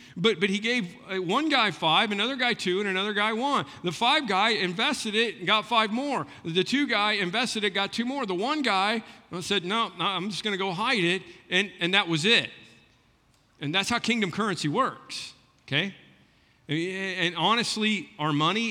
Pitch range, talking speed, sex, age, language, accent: 135-190 Hz, 195 wpm, male, 50-69, English, American